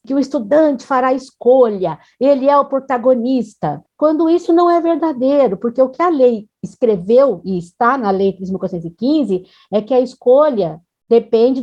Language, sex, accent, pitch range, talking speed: Portuguese, female, Brazilian, 235-305 Hz, 160 wpm